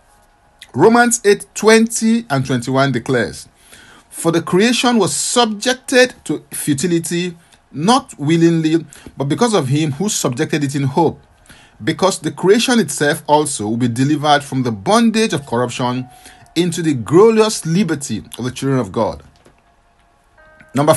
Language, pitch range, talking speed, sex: English, 135-185 Hz, 135 wpm, male